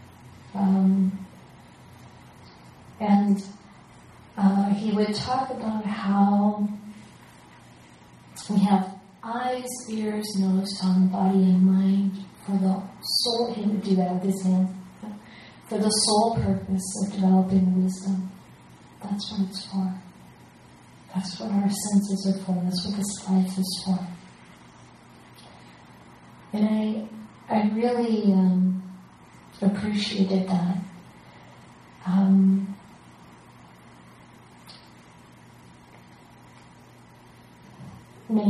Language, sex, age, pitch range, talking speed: English, female, 40-59, 180-195 Hz, 90 wpm